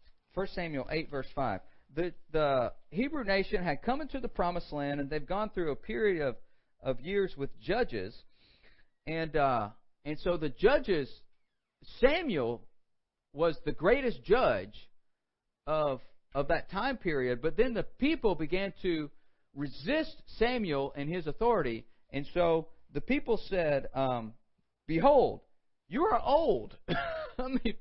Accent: American